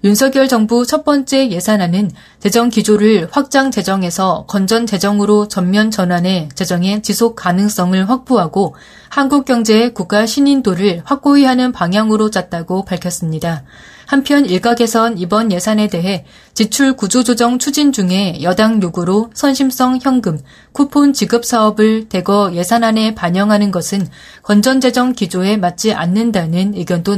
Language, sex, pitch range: Korean, female, 185-245 Hz